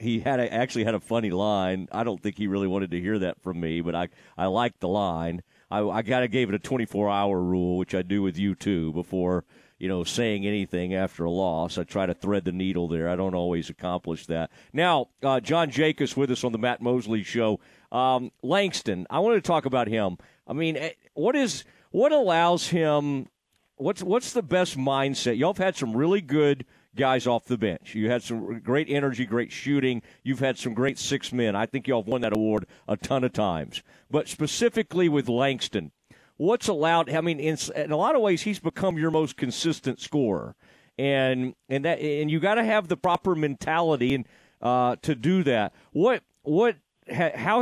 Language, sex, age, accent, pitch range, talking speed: English, male, 40-59, American, 105-150 Hz, 205 wpm